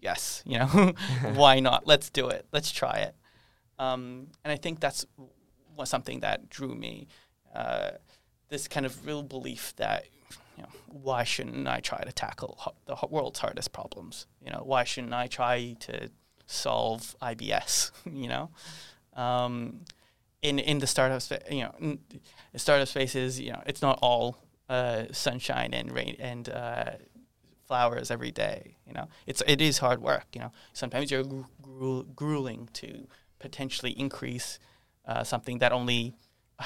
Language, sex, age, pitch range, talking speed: English, male, 20-39, 120-140 Hz, 170 wpm